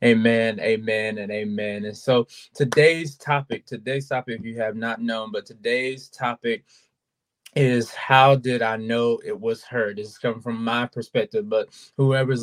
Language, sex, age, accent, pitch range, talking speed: English, male, 20-39, American, 115-130 Hz, 165 wpm